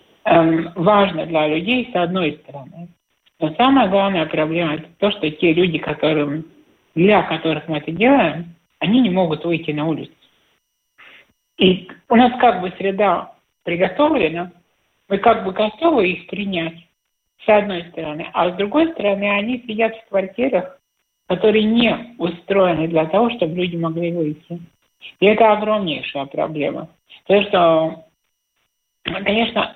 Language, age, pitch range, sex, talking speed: Russian, 60-79, 165-210 Hz, male, 135 wpm